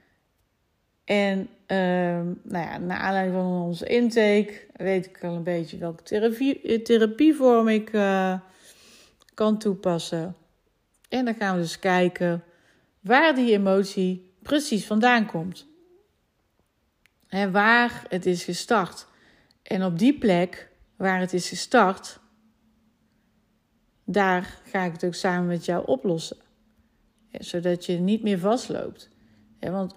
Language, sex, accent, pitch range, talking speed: Dutch, female, Dutch, 180-230 Hz, 120 wpm